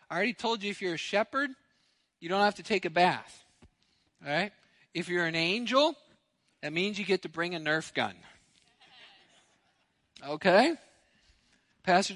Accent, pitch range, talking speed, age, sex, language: American, 140-185 Hz, 150 wpm, 40-59, male, English